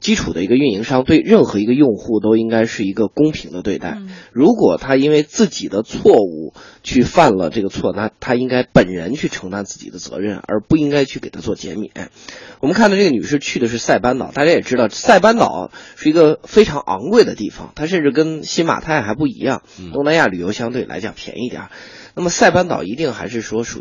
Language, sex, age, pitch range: Chinese, male, 20-39, 120-180 Hz